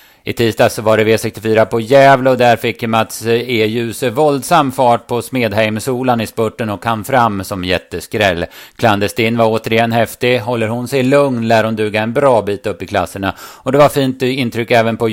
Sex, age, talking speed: male, 30-49, 185 wpm